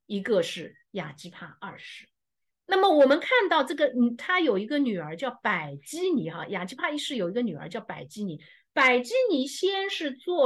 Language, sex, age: Japanese, female, 50-69